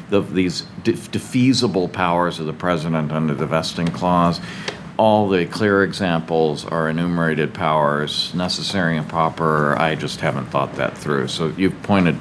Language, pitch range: English, 90-120 Hz